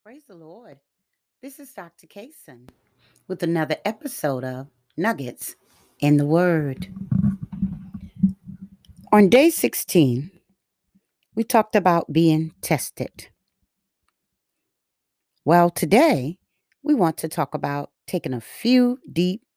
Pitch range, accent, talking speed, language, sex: 135-195 Hz, American, 105 wpm, English, female